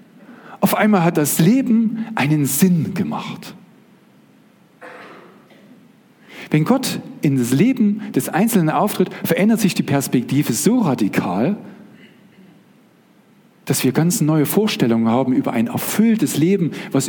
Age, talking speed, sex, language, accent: 40-59, 115 wpm, male, German, German